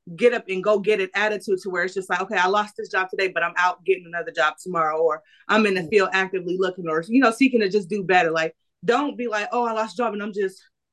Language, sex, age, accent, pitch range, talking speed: English, female, 20-39, American, 195-250 Hz, 280 wpm